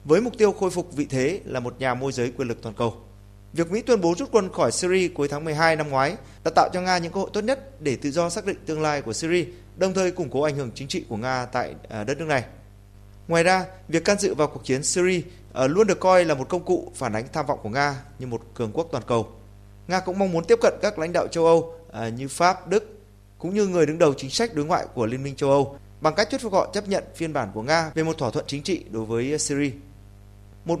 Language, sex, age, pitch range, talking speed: Vietnamese, male, 20-39, 120-175 Hz, 270 wpm